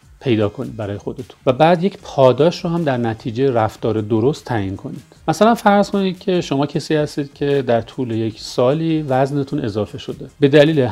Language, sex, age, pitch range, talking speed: Persian, male, 40-59, 115-155 Hz, 180 wpm